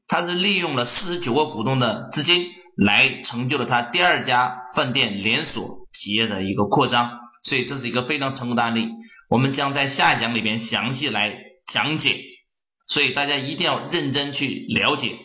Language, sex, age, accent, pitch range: Chinese, male, 20-39, native, 120-160 Hz